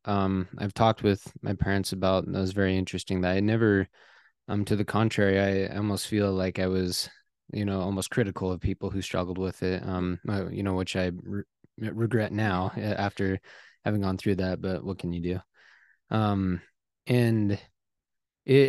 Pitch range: 95-105 Hz